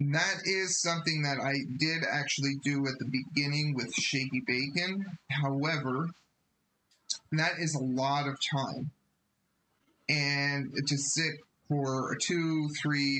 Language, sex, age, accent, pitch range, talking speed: English, male, 30-49, American, 130-145 Hz, 125 wpm